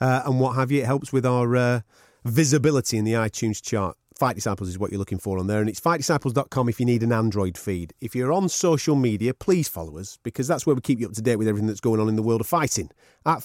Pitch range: 110-145 Hz